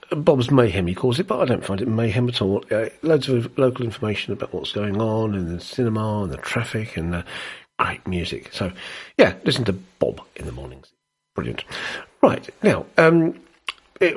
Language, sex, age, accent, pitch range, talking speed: English, male, 50-69, British, 100-145 Hz, 190 wpm